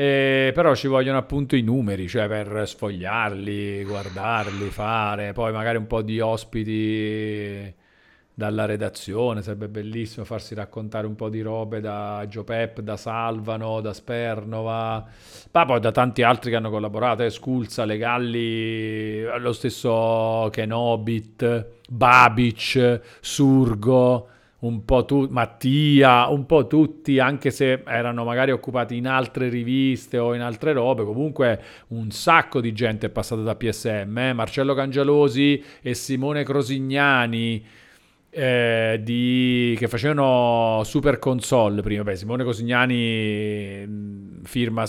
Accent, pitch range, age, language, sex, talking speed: native, 110-130 Hz, 40-59, Italian, male, 130 wpm